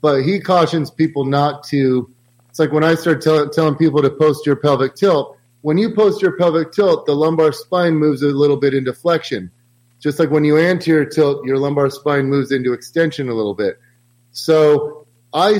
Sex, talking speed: male, 200 wpm